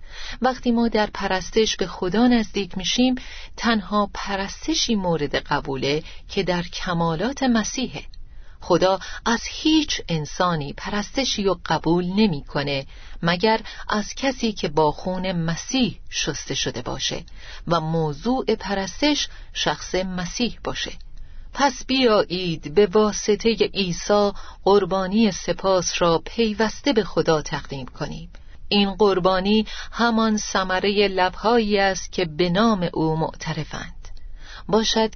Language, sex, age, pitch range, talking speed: Persian, female, 40-59, 160-215 Hz, 110 wpm